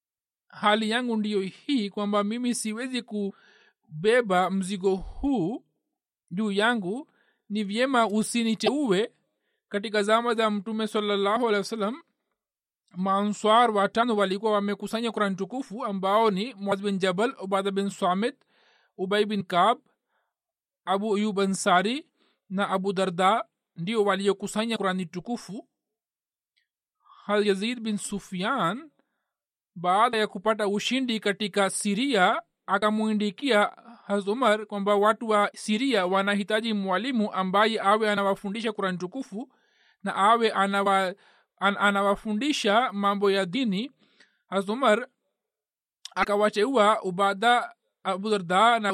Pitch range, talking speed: 195-225 Hz, 105 wpm